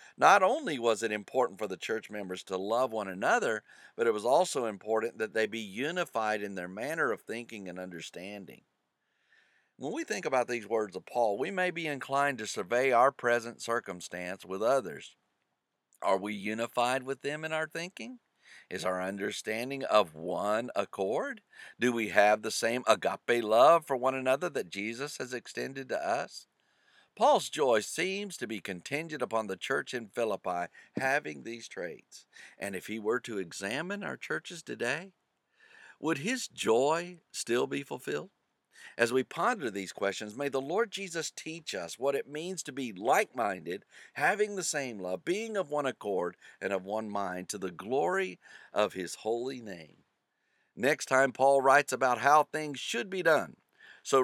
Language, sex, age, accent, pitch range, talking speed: English, male, 50-69, American, 105-155 Hz, 170 wpm